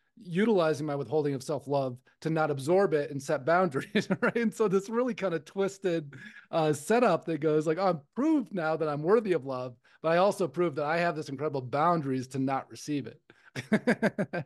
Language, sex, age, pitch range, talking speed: English, male, 30-49, 140-180 Hz, 195 wpm